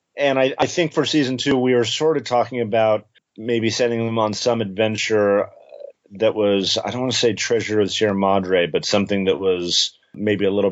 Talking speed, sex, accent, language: 205 wpm, male, American, English